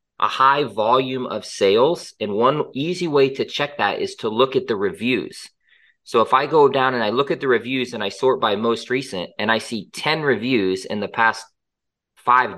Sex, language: male, English